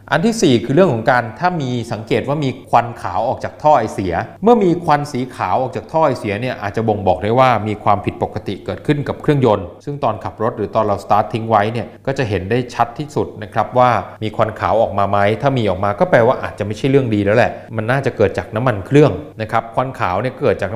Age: 20-39